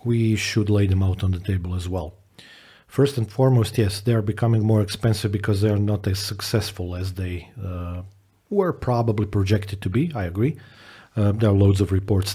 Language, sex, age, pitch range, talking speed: English, male, 40-59, 95-115 Hz, 195 wpm